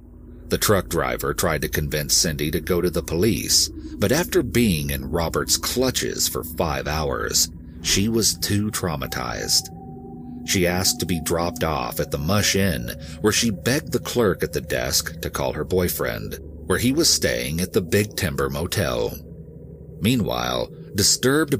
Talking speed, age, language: 160 wpm, 40-59, English